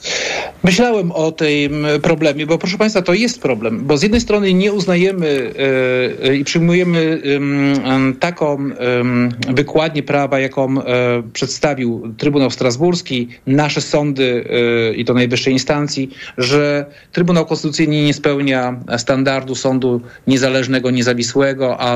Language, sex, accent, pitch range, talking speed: Polish, male, native, 130-165 Hz, 130 wpm